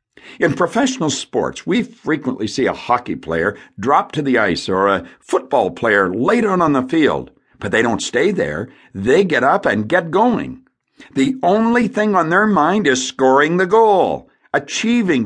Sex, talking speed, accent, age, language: male, 175 wpm, American, 60-79, English